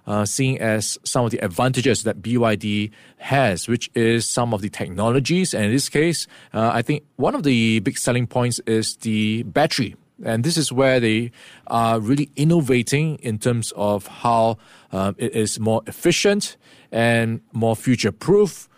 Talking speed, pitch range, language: 165 wpm, 110-135 Hz, English